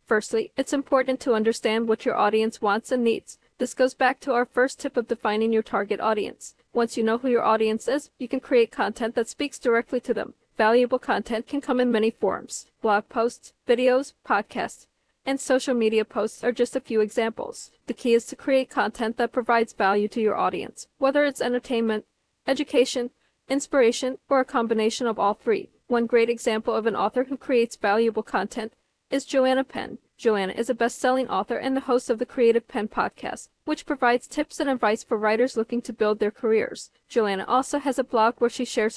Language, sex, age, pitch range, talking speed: English, female, 40-59, 220-255 Hz, 195 wpm